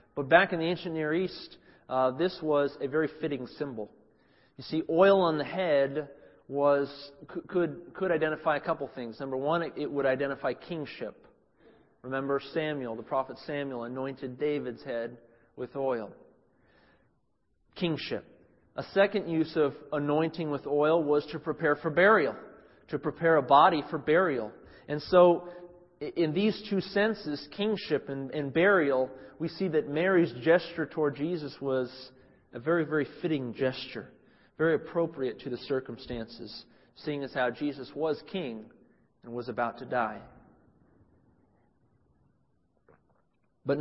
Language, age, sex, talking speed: English, 40-59, male, 140 wpm